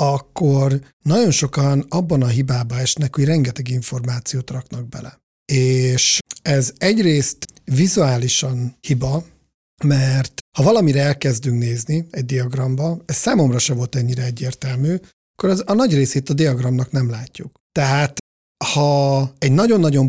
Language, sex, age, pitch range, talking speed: Hungarian, male, 50-69, 125-145 Hz, 130 wpm